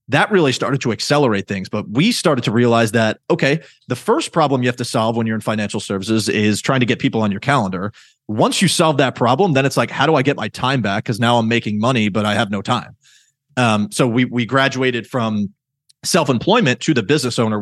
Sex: male